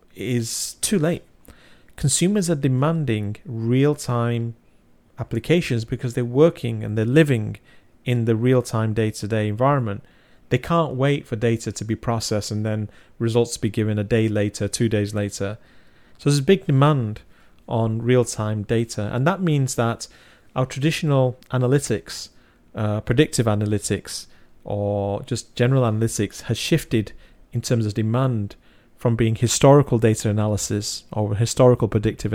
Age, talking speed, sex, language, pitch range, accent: 40-59, 135 wpm, male, English, 110-130 Hz, British